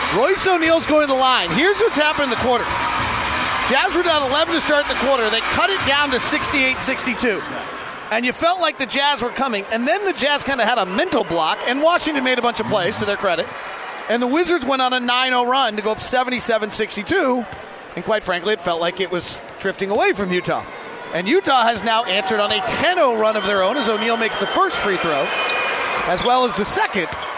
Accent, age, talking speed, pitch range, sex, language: American, 30-49, 225 wpm, 230-285 Hz, male, English